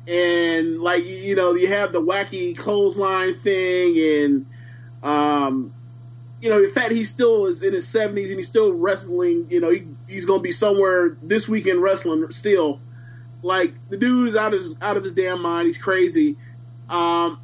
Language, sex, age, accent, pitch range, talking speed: English, male, 20-39, American, 140-235 Hz, 180 wpm